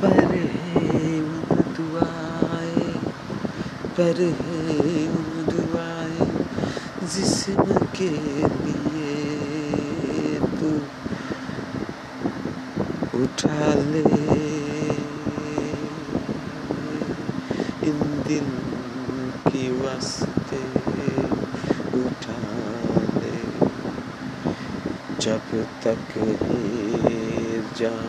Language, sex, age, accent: Bengali, male, 50-69, native